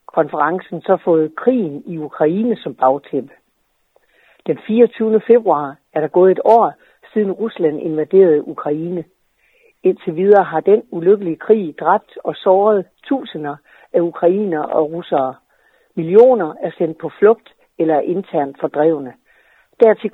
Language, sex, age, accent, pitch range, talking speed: Danish, female, 60-79, native, 160-220 Hz, 135 wpm